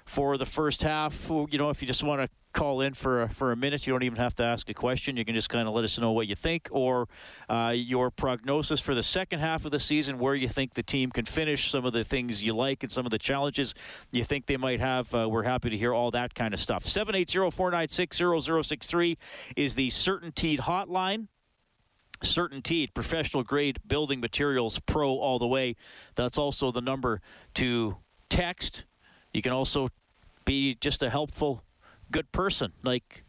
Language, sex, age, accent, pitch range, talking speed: English, male, 40-59, American, 120-155 Hz, 195 wpm